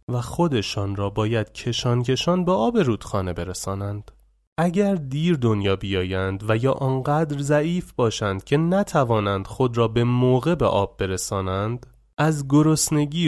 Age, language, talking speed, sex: 30-49, Persian, 135 wpm, male